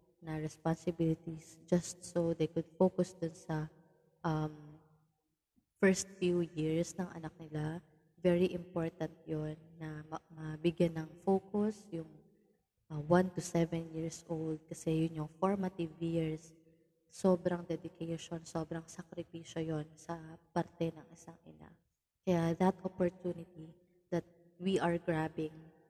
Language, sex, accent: Filipino, female, native